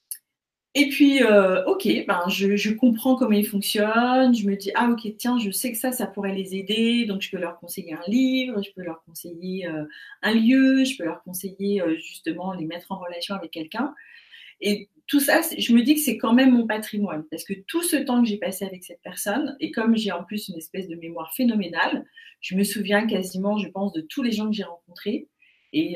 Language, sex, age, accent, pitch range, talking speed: French, female, 40-59, French, 175-245 Hz, 225 wpm